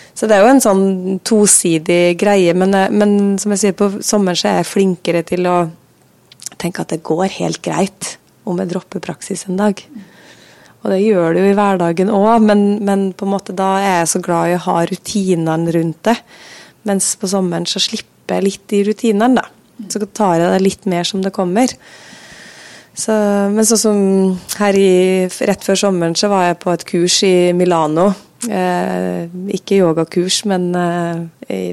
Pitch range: 175-205 Hz